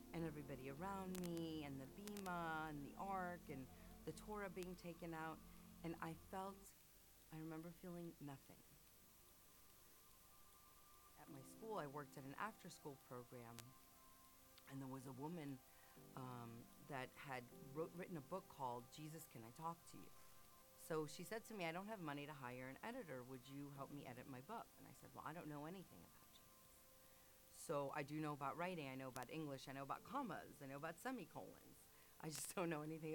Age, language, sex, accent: 40-59, English, female, American